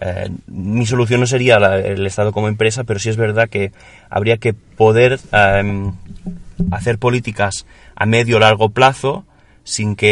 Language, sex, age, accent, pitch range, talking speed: Spanish, male, 30-49, Spanish, 105-120 Hz, 160 wpm